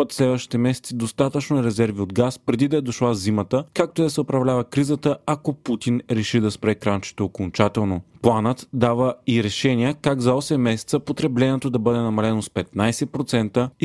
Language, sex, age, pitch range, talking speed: Bulgarian, male, 30-49, 115-140 Hz, 165 wpm